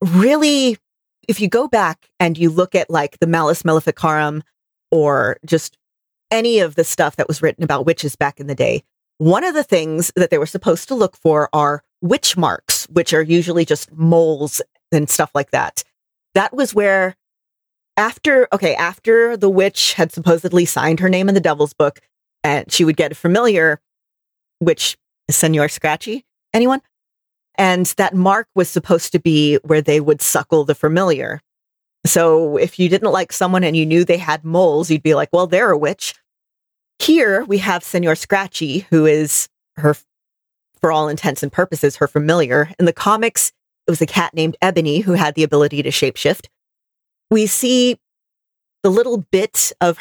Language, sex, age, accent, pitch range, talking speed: English, female, 40-59, American, 155-195 Hz, 175 wpm